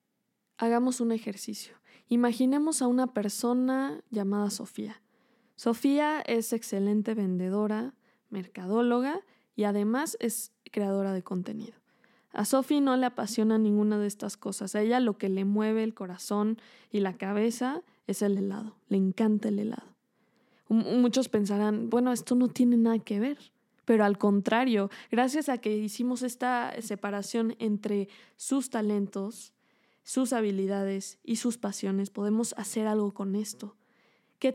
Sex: female